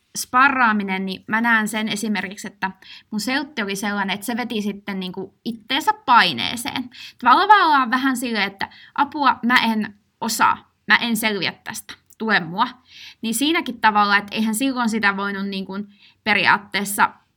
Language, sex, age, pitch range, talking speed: Finnish, female, 20-39, 200-240 Hz, 145 wpm